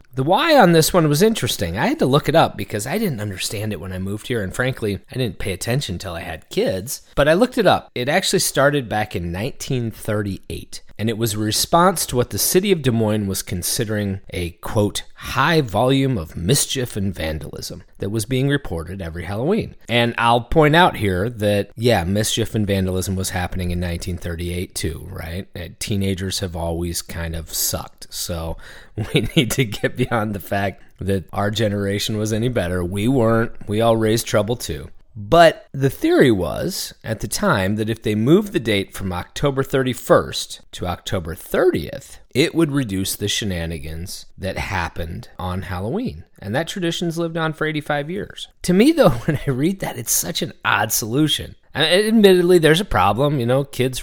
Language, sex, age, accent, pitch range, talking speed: English, male, 30-49, American, 95-135 Hz, 190 wpm